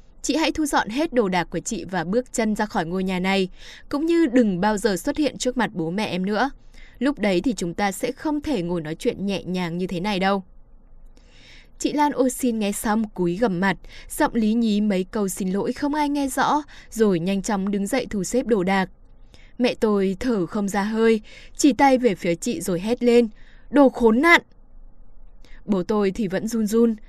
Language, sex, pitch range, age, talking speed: Vietnamese, female, 190-245 Hz, 10-29, 220 wpm